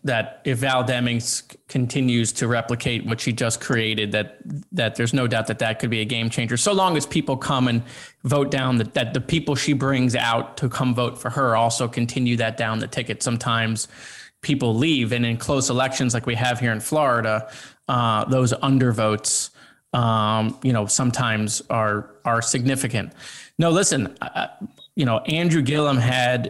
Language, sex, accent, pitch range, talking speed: English, male, American, 115-135 Hz, 185 wpm